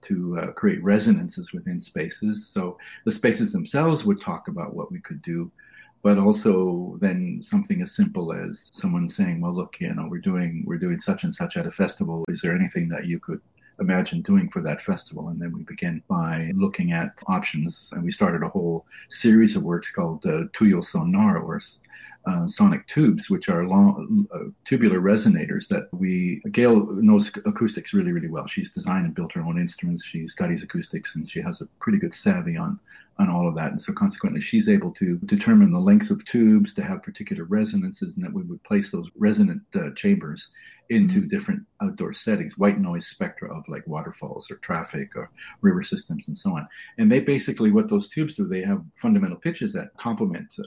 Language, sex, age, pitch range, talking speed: English, male, 40-59, 180-205 Hz, 195 wpm